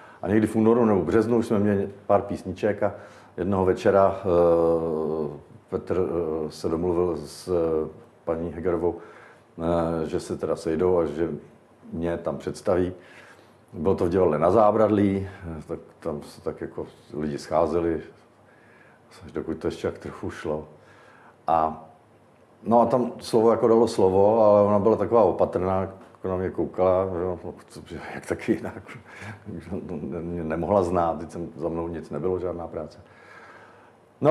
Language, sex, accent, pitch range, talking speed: Czech, male, native, 85-105 Hz, 140 wpm